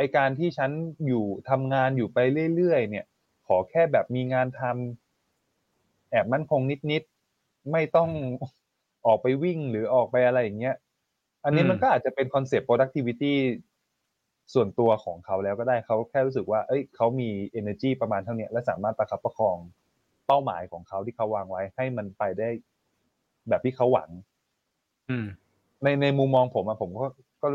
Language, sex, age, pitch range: Thai, male, 20-39, 105-135 Hz